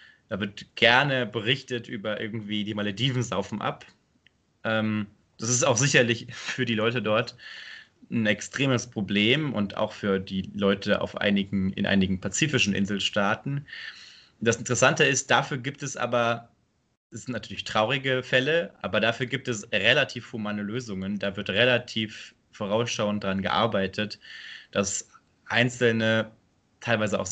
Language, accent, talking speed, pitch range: German, German, 130 wpm, 105-125 Hz